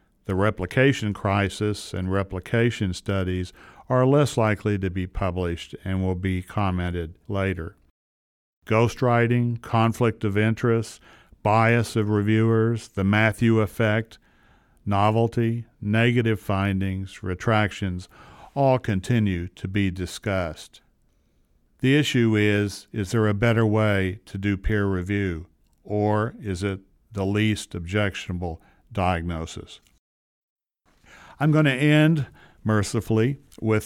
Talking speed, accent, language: 110 wpm, American, English